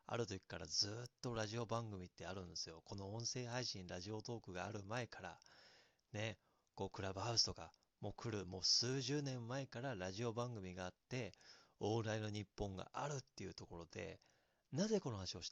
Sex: male